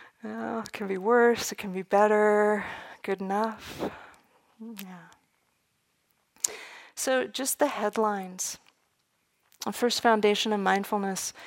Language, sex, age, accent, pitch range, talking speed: English, female, 40-59, American, 190-215 Hz, 110 wpm